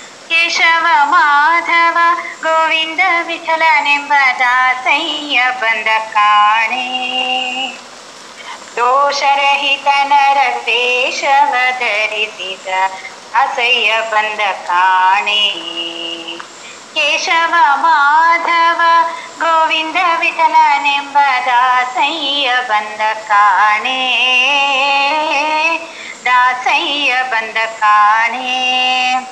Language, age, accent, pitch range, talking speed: English, 30-49, Indian, 225-330 Hz, 40 wpm